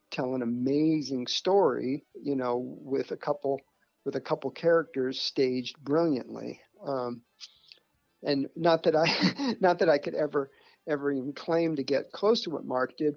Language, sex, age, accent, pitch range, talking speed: English, male, 50-69, American, 130-195 Hz, 160 wpm